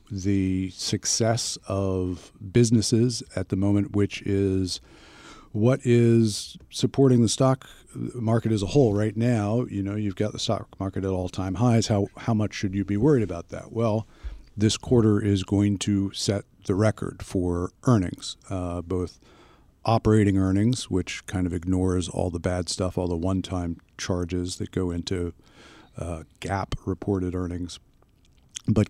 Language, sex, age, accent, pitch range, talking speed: English, male, 50-69, American, 95-115 Hz, 155 wpm